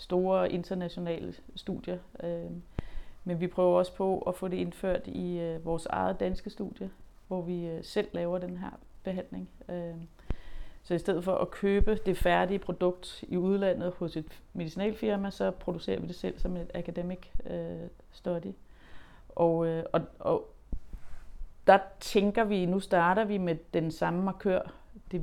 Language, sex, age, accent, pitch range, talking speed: Danish, female, 30-49, native, 165-195 Hz, 140 wpm